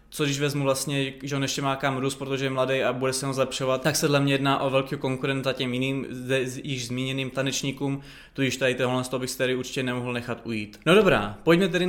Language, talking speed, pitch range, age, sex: Czech, 225 wpm, 135-145 Hz, 20-39, male